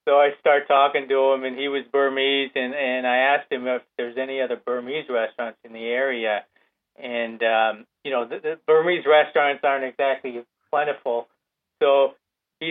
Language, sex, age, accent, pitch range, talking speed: English, male, 30-49, American, 125-145 Hz, 175 wpm